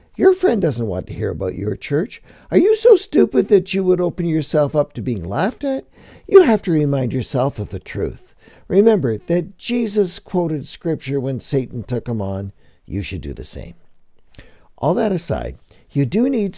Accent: American